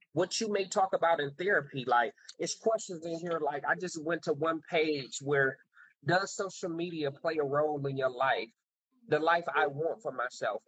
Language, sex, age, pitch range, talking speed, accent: English, male, 30-49, 140-205 Hz, 195 wpm, American